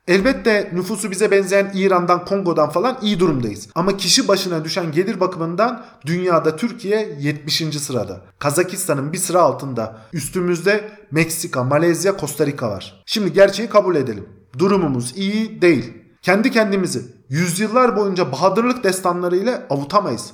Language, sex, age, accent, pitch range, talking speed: Turkish, male, 40-59, native, 155-210 Hz, 125 wpm